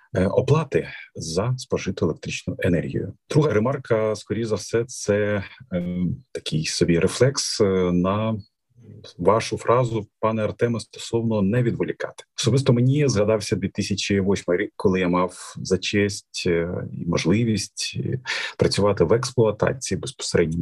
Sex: male